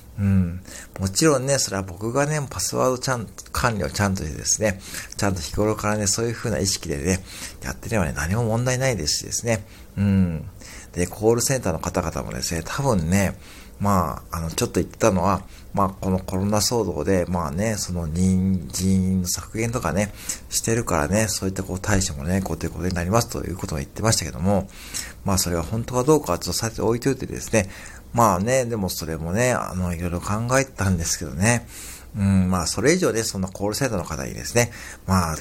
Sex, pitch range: male, 90-105 Hz